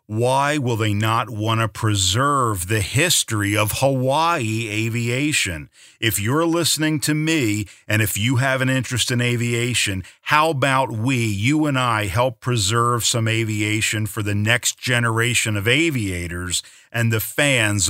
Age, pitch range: 50-69, 105-130 Hz